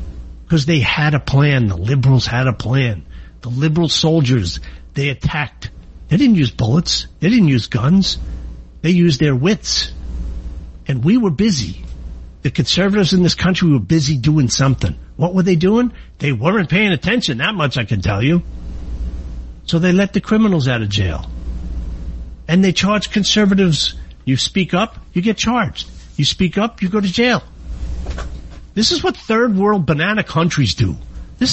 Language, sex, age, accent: English, male, 50-69, American